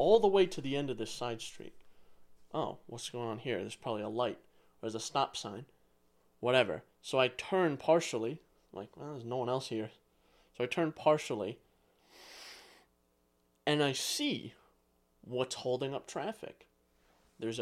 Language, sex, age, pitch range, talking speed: English, male, 30-49, 100-165 Hz, 160 wpm